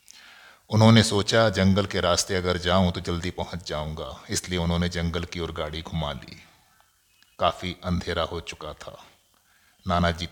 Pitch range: 85-95 Hz